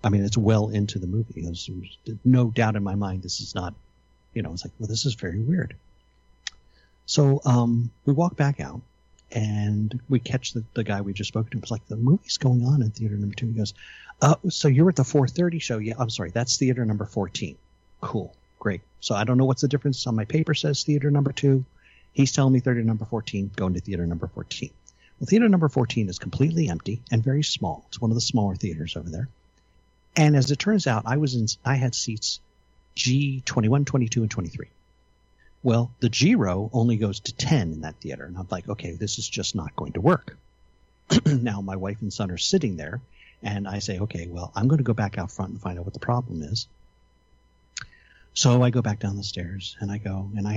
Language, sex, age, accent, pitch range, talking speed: English, male, 50-69, American, 95-130 Hz, 220 wpm